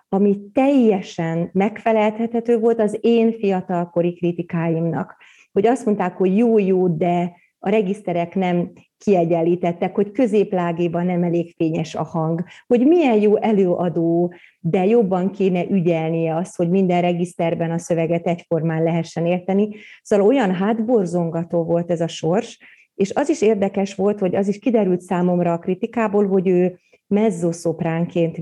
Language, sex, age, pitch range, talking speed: Hungarian, female, 30-49, 175-215 Hz, 135 wpm